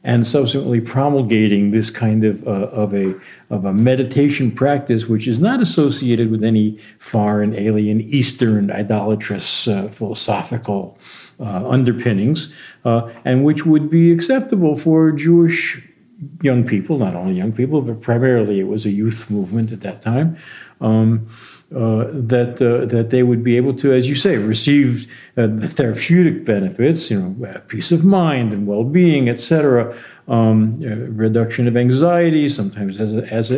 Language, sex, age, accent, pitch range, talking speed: English, male, 50-69, American, 110-150 Hz, 145 wpm